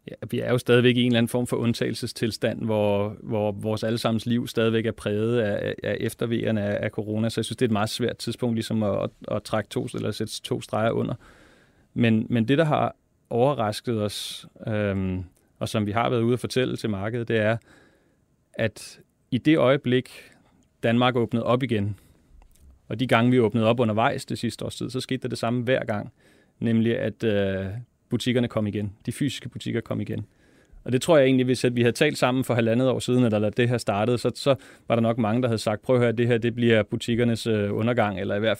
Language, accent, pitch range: Danish, native, 110-130 Hz